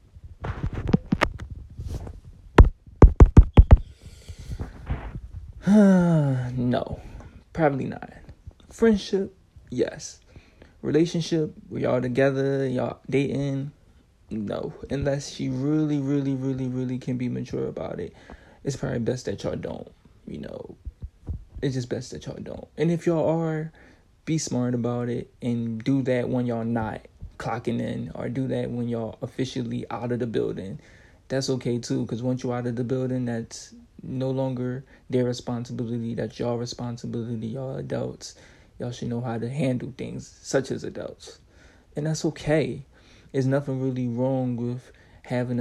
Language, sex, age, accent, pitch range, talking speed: English, male, 20-39, American, 115-135 Hz, 135 wpm